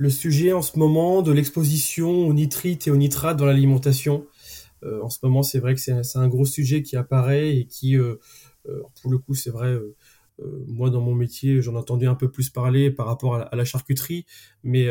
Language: French